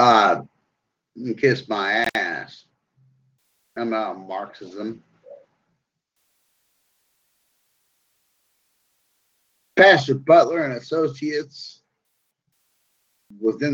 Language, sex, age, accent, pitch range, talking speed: English, male, 50-69, American, 115-145 Hz, 60 wpm